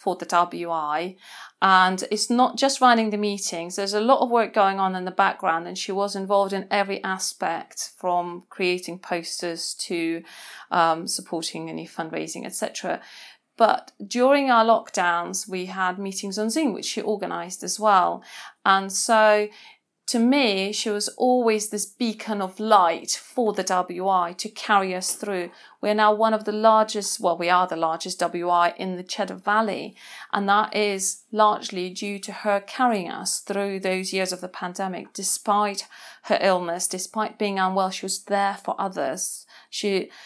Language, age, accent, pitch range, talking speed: English, 40-59, British, 180-215 Hz, 165 wpm